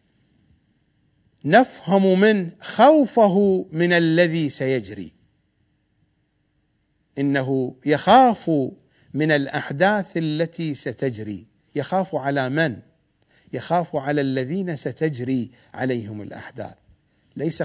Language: English